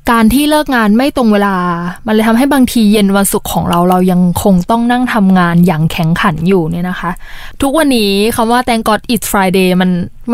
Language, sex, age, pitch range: Thai, female, 20-39, 195-255 Hz